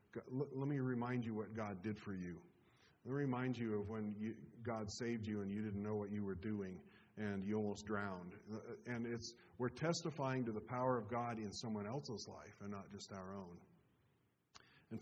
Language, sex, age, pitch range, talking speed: English, male, 40-59, 100-120 Hz, 200 wpm